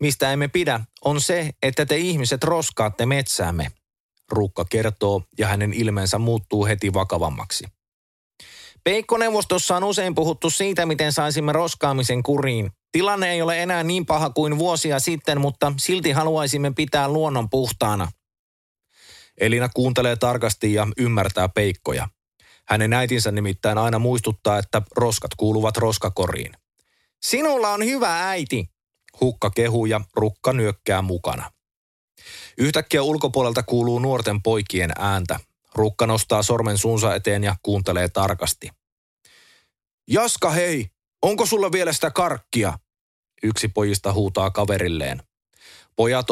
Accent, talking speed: native, 120 wpm